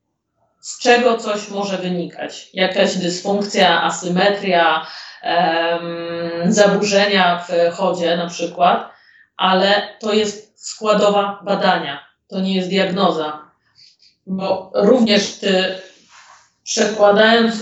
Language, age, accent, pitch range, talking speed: Polish, 30-49, native, 185-210 Hz, 90 wpm